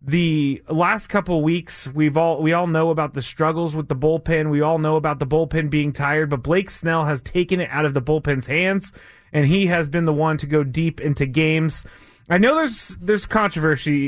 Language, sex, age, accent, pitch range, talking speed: English, male, 30-49, American, 140-170 Hz, 215 wpm